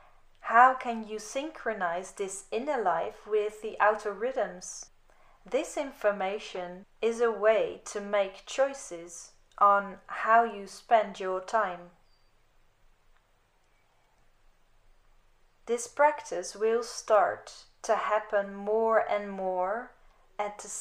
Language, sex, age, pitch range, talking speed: English, female, 30-49, 200-240 Hz, 105 wpm